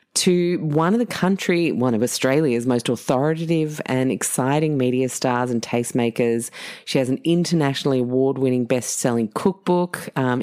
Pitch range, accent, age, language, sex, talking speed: 125-155 Hz, Australian, 30-49, English, female, 140 wpm